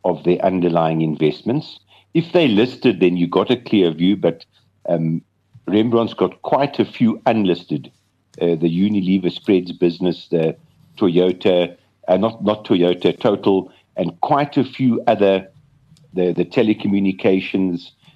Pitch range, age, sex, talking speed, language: 90-110 Hz, 50-69, male, 135 wpm, English